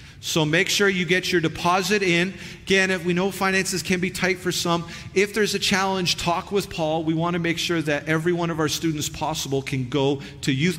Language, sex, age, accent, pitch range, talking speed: English, male, 40-59, American, 145-185 Hz, 230 wpm